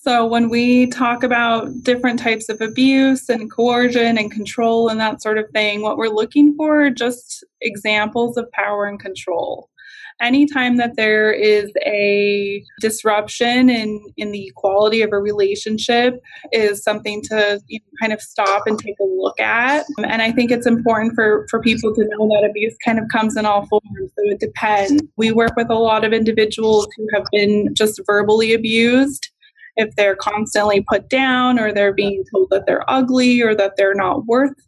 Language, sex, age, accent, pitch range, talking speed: English, female, 20-39, American, 210-235 Hz, 180 wpm